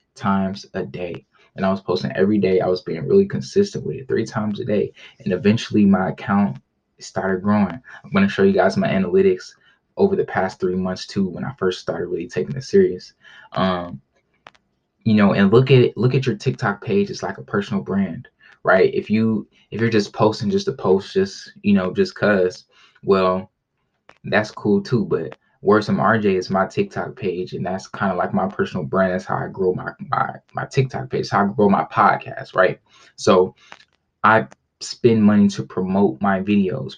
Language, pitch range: English, 95-125 Hz